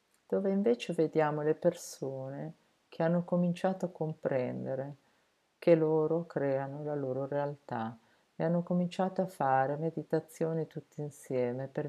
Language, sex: Italian, female